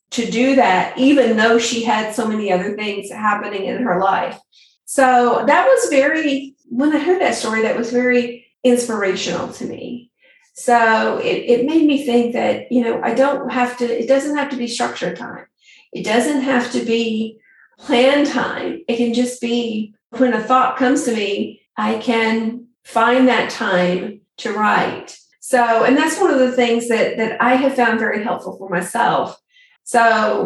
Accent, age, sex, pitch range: American, 40-59, female, 225-265 Hz